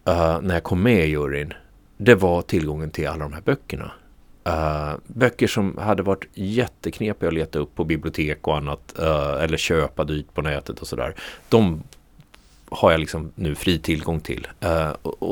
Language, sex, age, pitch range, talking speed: Swedish, male, 30-49, 80-100 Hz, 170 wpm